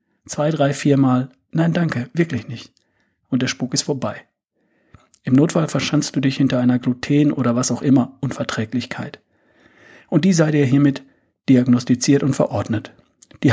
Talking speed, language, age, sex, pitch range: 150 wpm, German, 40-59, male, 125-150 Hz